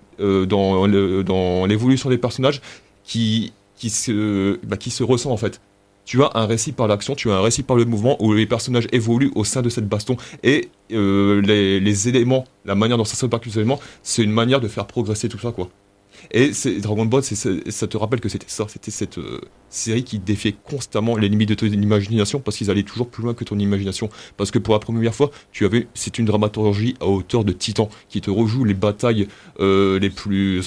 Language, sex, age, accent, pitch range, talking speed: French, male, 30-49, French, 100-115 Hz, 225 wpm